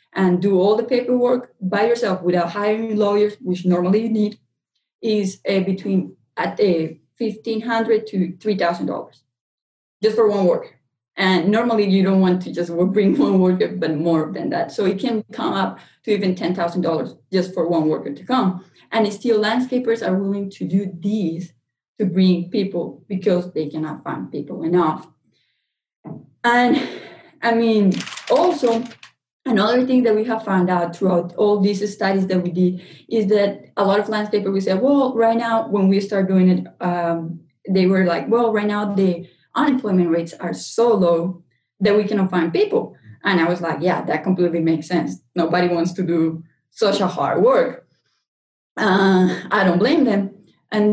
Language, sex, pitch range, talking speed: English, female, 180-215 Hz, 170 wpm